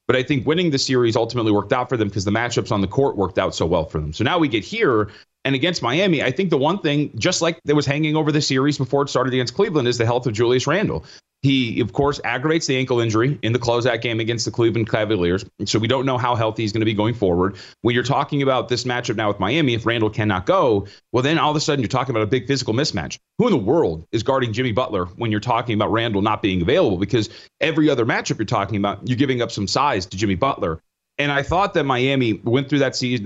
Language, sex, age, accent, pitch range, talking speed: English, male, 30-49, American, 105-135 Hz, 265 wpm